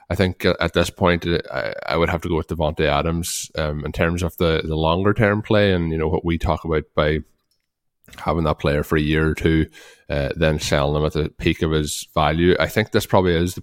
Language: English